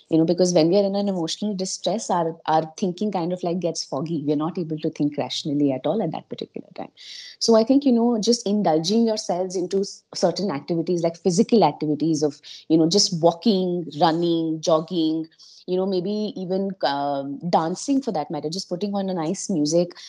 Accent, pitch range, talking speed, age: Indian, 155-200 Hz, 195 wpm, 20-39